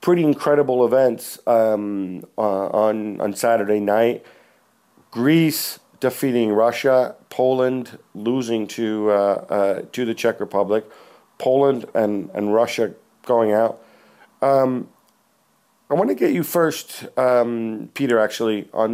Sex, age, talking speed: male, 50-69, 120 wpm